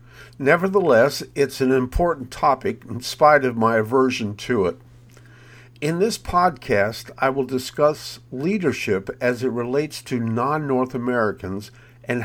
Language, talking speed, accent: English, 125 wpm, American